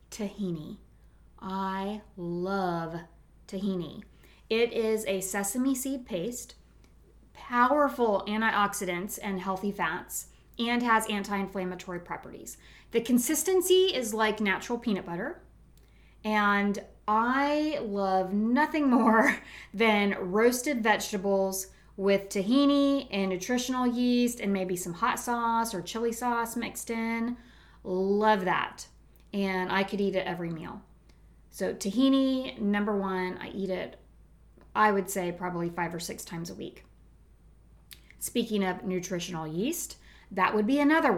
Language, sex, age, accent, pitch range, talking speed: English, female, 20-39, American, 185-235 Hz, 120 wpm